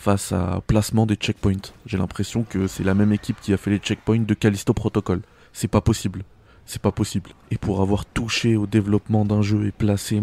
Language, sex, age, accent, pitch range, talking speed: French, male, 20-39, French, 100-115 Hz, 210 wpm